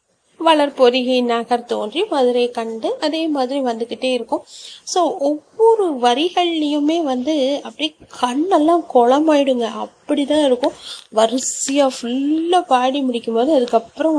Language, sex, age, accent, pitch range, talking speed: Tamil, female, 30-49, native, 230-285 Hz, 100 wpm